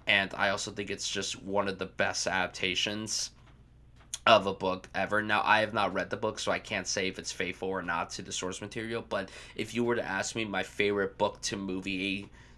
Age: 20-39